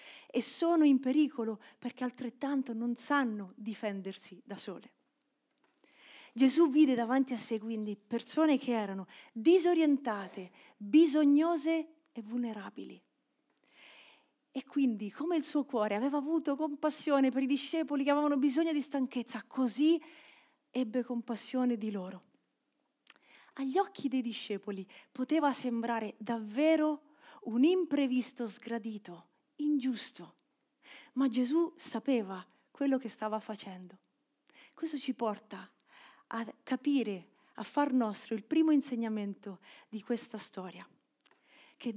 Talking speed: 115 wpm